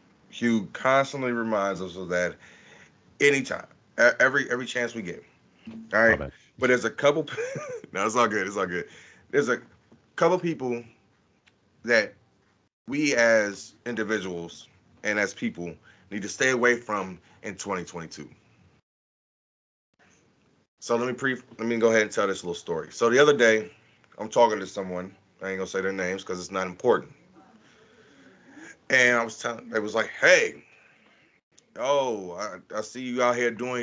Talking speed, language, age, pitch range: 160 wpm, English, 30-49, 105-125 Hz